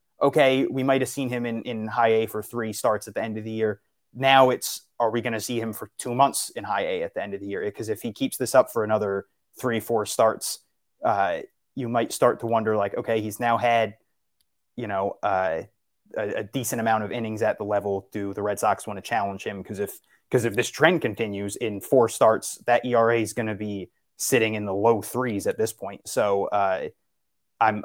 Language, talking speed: English, 230 wpm